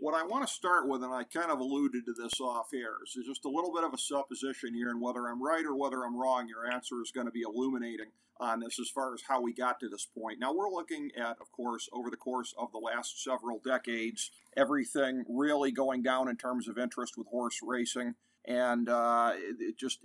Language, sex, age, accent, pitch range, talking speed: English, male, 50-69, American, 120-130 Hz, 235 wpm